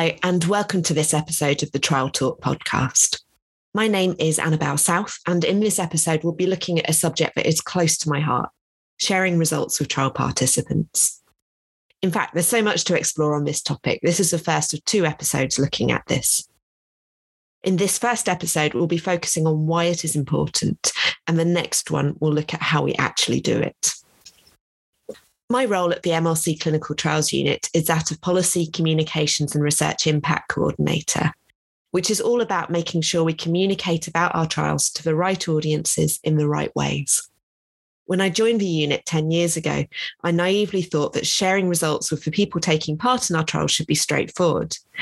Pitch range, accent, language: 150-180 Hz, British, English